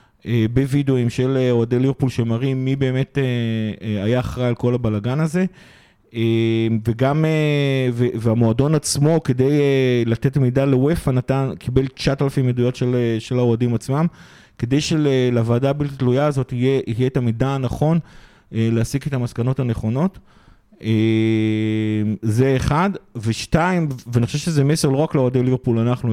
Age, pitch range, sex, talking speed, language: 30-49, 115-140 Hz, male, 125 wpm, Hebrew